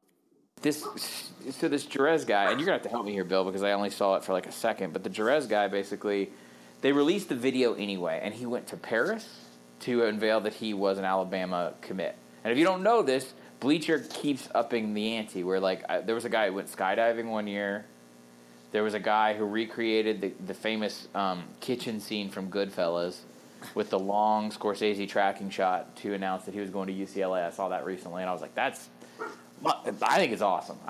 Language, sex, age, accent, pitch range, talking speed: English, male, 20-39, American, 95-110 Hz, 210 wpm